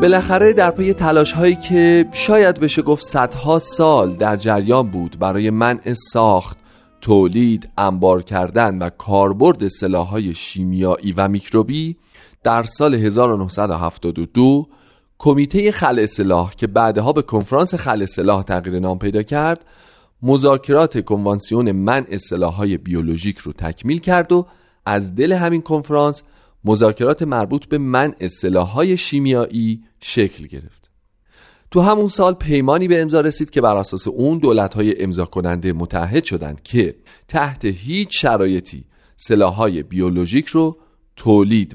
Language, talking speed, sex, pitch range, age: Persian, 125 wpm, male, 95-145 Hz, 40-59